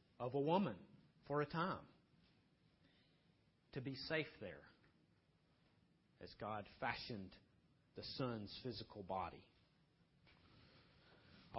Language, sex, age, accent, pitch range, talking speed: English, male, 40-59, American, 135-170 Hz, 95 wpm